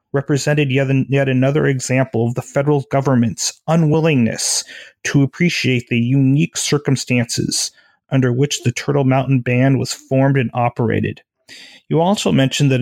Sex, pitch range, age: male, 130-150 Hz, 30-49